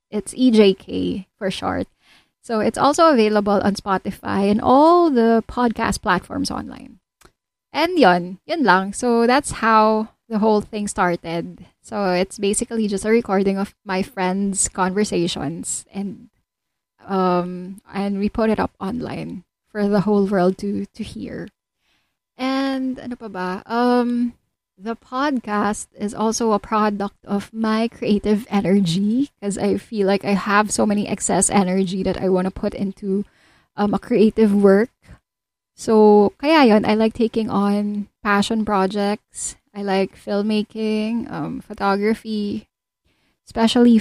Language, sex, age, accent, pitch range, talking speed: English, female, 20-39, Filipino, 195-225 Hz, 140 wpm